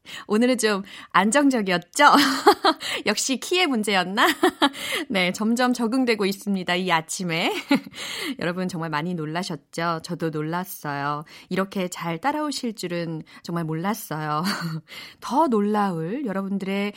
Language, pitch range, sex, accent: Korean, 185-280 Hz, female, native